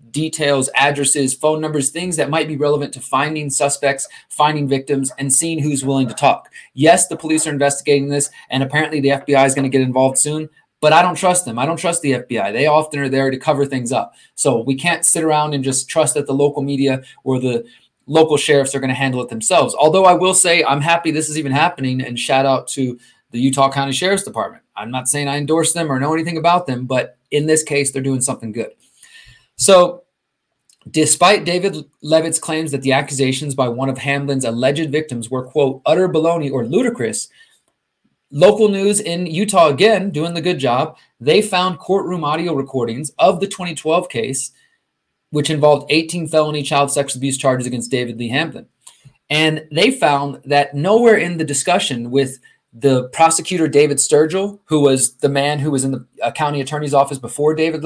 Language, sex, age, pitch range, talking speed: English, male, 20-39, 135-160 Hz, 195 wpm